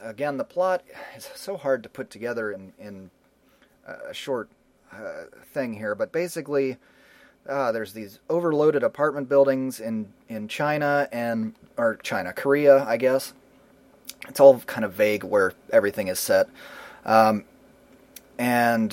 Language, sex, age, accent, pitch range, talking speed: English, male, 30-49, American, 115-140 Hz, 140 wpm